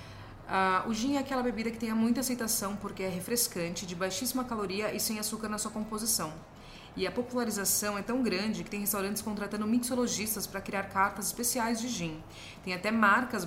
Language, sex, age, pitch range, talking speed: Portuguese, female, 30-49, 185-235 Hz, 185 wpm